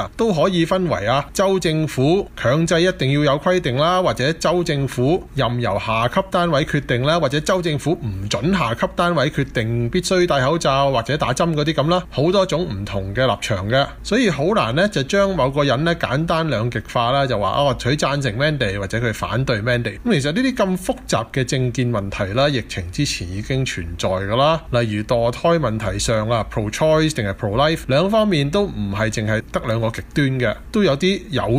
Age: 20-39